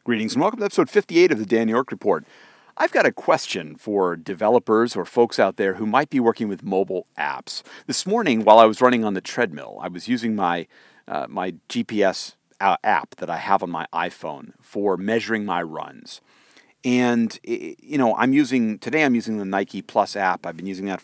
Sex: male